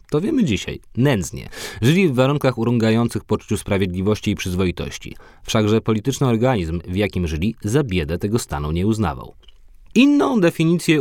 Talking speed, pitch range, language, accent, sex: 140 wpm, 90-120 Hz, Polish, native, male